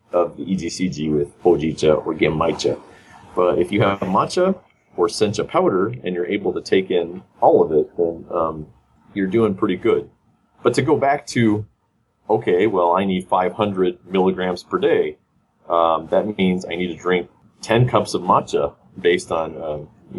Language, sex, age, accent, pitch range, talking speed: English, male, 30-49, American, 85-115 Hz, 170 wpm